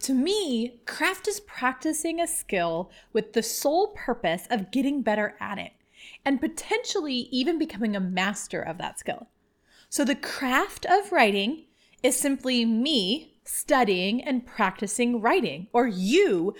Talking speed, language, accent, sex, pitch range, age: 140 wpm, English, American, female, 215-315 Hz, 30-49